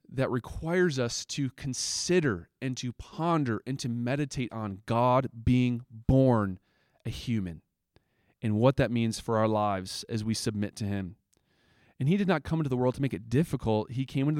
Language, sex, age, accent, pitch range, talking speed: English, male, 30-49, American, 110-135 Hz, 185 wpm